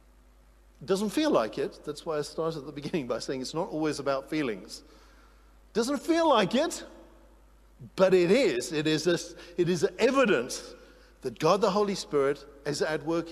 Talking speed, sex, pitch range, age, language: 175 wpm, male, 130-200 Hz, 50-69, English